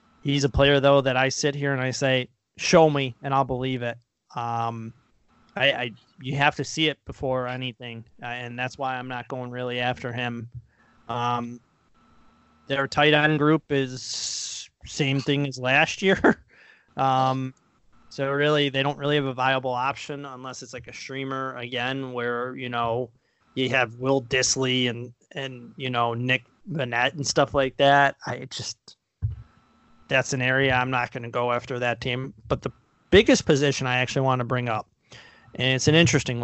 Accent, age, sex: American, 20-39, male